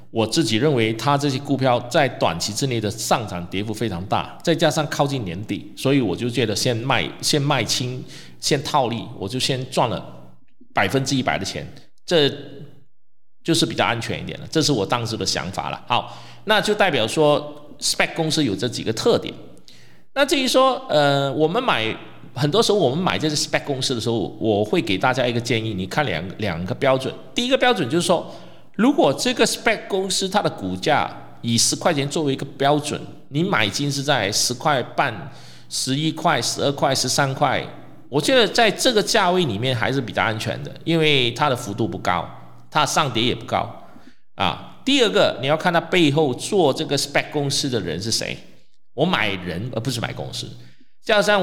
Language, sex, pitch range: Chinese, male, 115-160 Hz